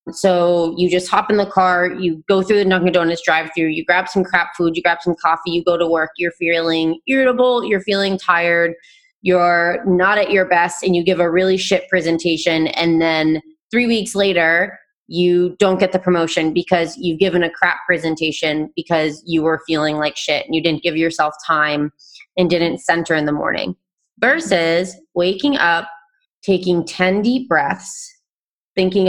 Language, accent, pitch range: English, American, 165-195 Hz